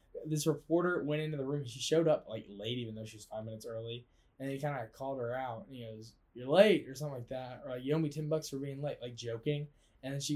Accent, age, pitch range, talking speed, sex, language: American, 10-29, 120-155 Hz, 285 wpm, male, English